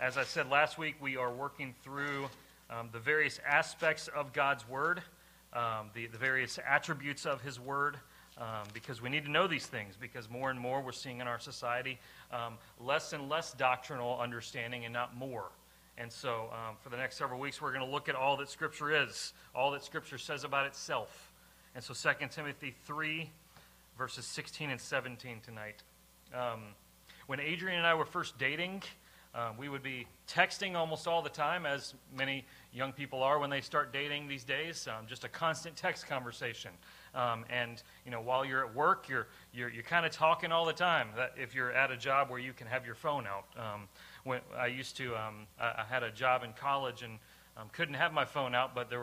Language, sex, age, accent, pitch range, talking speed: English, male, 30-49, American, 120-145 Hz, 205 wpm